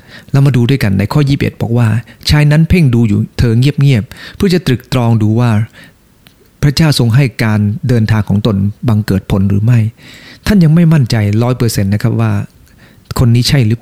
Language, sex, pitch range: English, male, 105-135 Hz